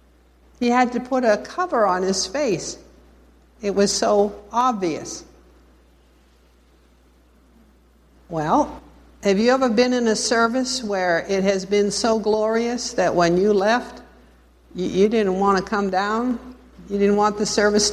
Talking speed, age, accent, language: 140 wpm, 60-79, American, English